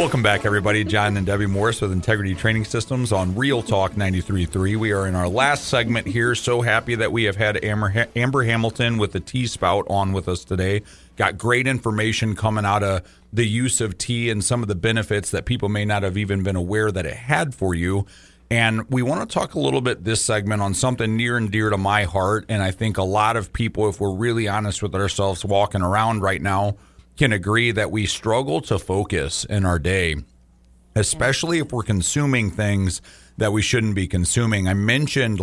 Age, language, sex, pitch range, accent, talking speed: 40-59, English, male, 95-115 Hz, American, 210 wpm